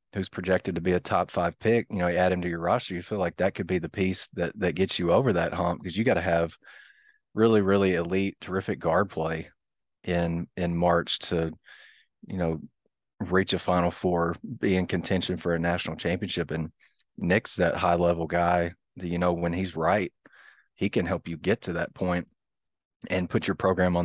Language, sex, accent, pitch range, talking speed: English, male, American, 85-95 Hz, 210 wpm